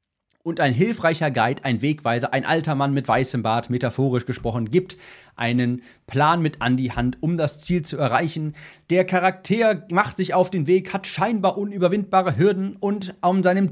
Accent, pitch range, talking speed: German, 140-180 Hz, 175 wpm